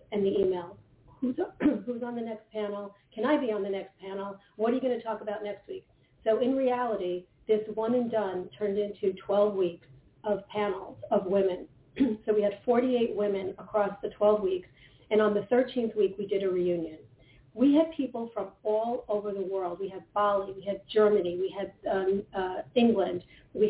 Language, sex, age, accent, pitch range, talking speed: English, female, 40-59, American, 195-235 Hz, 195 wpm